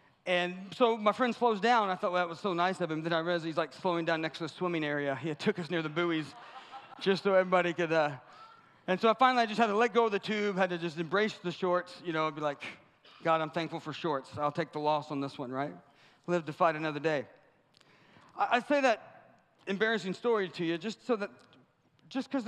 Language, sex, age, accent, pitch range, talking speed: English, male, 40-59, American, 145-195 Hz, 240 wpm